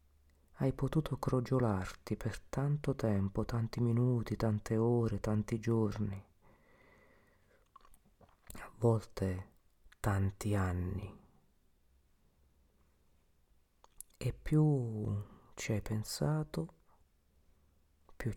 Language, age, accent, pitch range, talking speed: Italian, 40-59, native, 80-130 Hz, 70 wpm